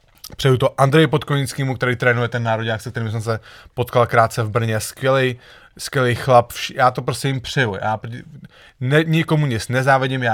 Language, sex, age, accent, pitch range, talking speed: English, male, 30-49, Czech, 115-145 Hz, 175 wpm